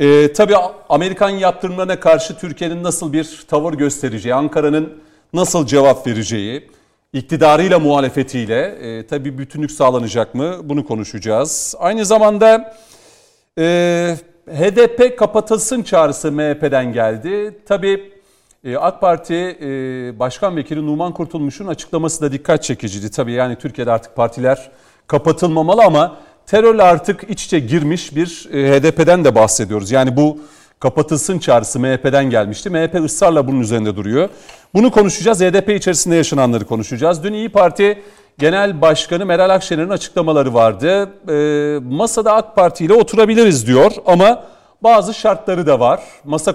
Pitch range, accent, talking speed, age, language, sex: 140-190 Hz, native, 130 wpm, 40-59, Turkish, male